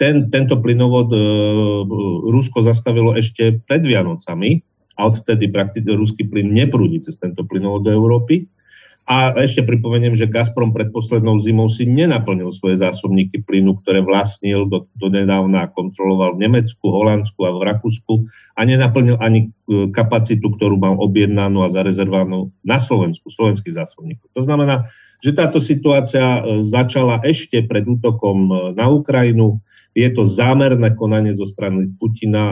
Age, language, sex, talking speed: 40-59, Slovak, male, 140 wpm